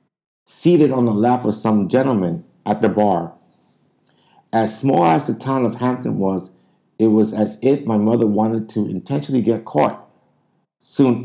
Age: 50-69